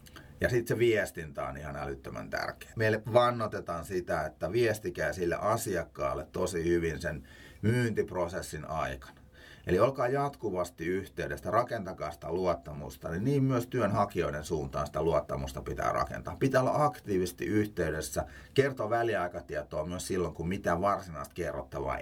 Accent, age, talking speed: native, 30-49, 130 wpm